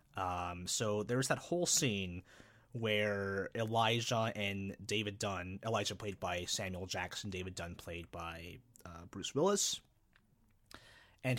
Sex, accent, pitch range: male, American, 100-130 Hz